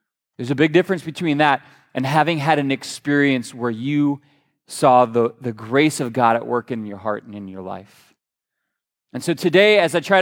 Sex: male